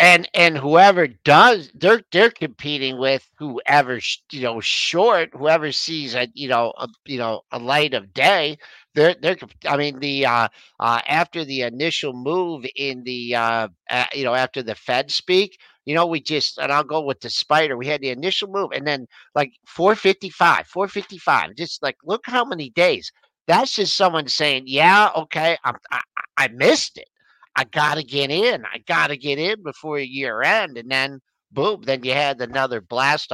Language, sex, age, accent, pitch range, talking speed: English, male, 50-69, American, 130-175 Hz, 185 wpm